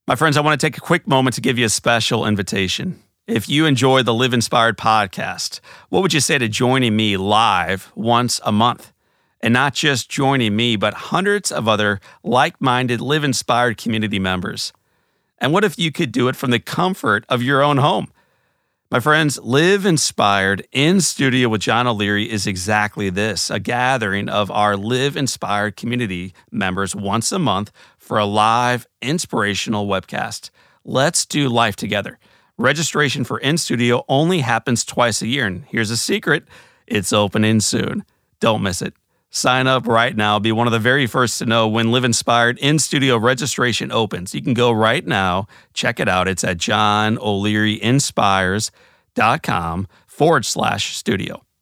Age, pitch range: 40-59, 105-130 Hz